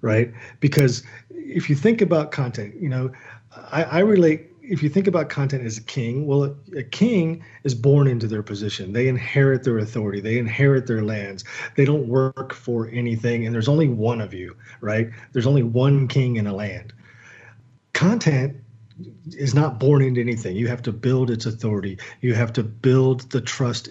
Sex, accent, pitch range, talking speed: male, American, 115-145 Hz, 185 wpm